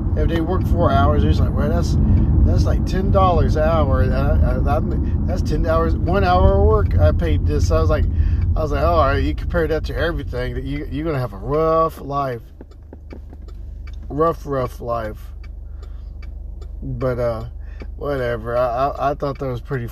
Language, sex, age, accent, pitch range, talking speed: English, male, 40-59, American, 75-120 Hz, 180 wpm